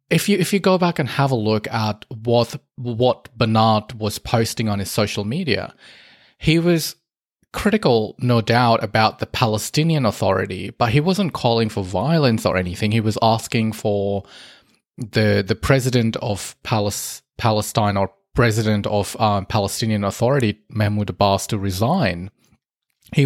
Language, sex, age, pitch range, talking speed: English, male, 20-39, 110-140 Hz, 150 wpm